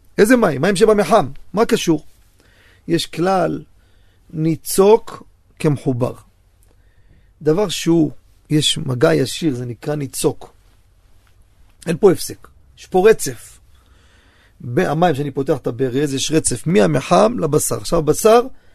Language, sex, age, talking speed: Hebrew, male, 40-59, 110 wpm